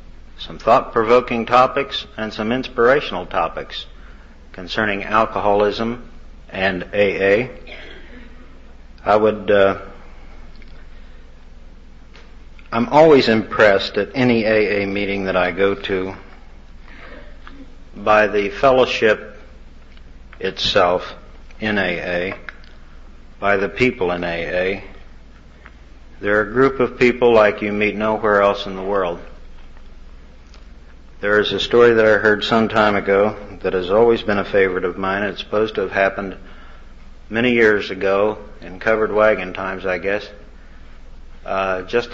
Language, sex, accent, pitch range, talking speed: English, male, American, 65-110 Hz, 120 wpm